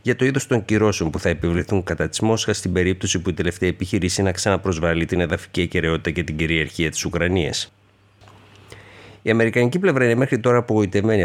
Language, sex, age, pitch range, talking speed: Greek, male, 50-69, 85-105 Hz, 185 wpm